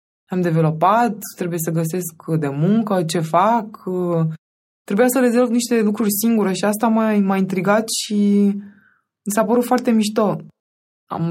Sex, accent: female, native